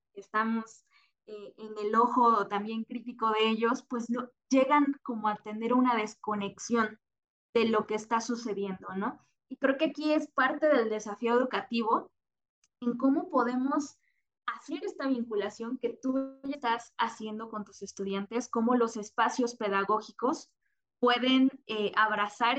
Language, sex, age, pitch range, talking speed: Spanish, female, 20-39, 215-260 Hz, 140 wpm